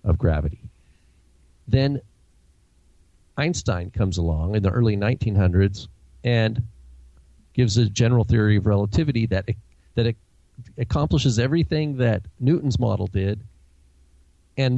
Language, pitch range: English, 100-135 Hz